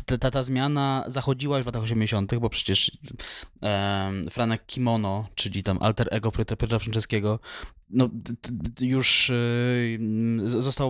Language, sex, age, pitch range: Polish, male, 20-39, 105-125 Hz